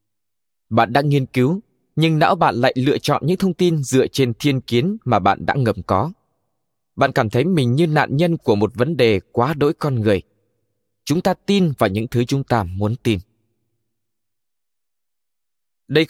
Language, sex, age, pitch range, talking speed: Vietnamese, male, 20-39, 110-155 Hz, 180 wpm